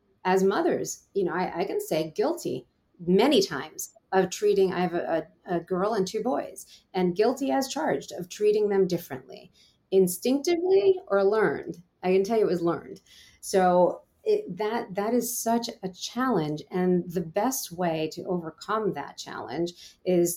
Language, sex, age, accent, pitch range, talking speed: English, female, 40-59, American, 165-200 Hz, 170 wpm